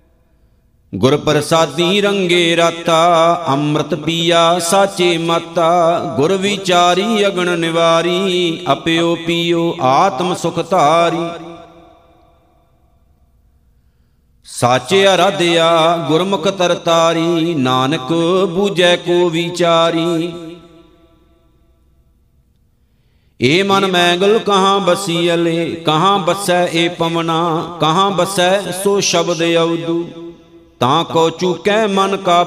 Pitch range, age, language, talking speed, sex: 165-180 Hz, 50-69, Punjabi, 85 wpm, male